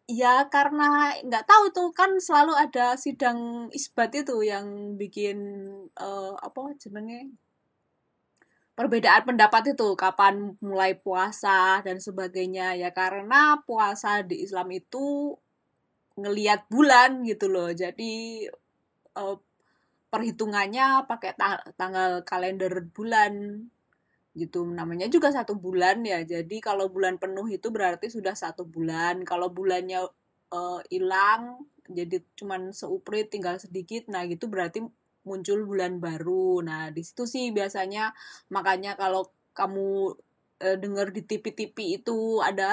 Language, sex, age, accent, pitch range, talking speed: Indonesian, female, 20-39, native, 185-235 Hz, 120 wpm